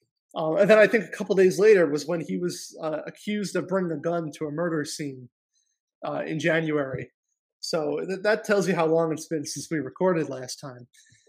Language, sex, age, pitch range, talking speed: English, male, 20-39, 150-180 Hz, 220 wpm